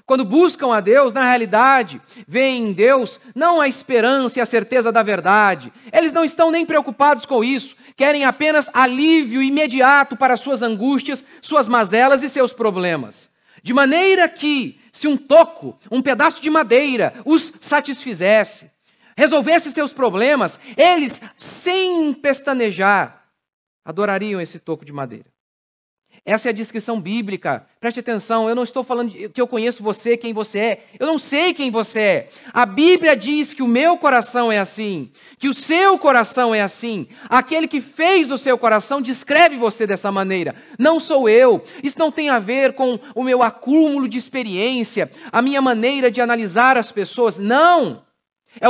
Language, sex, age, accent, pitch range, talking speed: Portuguese, male, 40-59, Brazilian, 230-290 Hz, 160 wpm